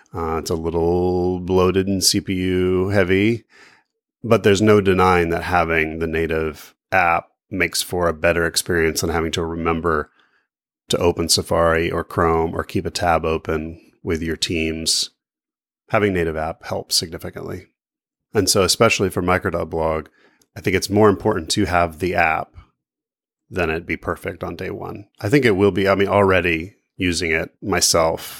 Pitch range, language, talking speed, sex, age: 80-95 Hz, English, 160 wpm, male, 30-49